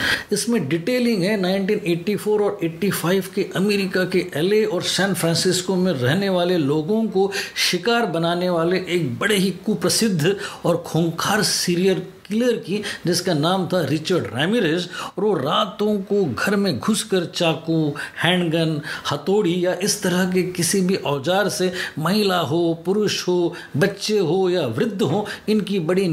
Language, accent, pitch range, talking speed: Hindi, native, 170-200 Hz, 145 wpm